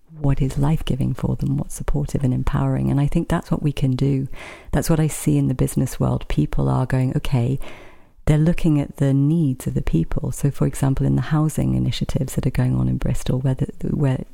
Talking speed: 220 wpm